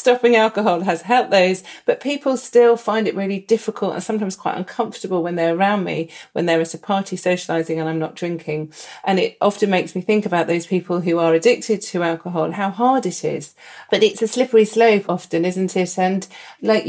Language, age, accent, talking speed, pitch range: English, 40-59, British, 205 wpm, 170-220 Hz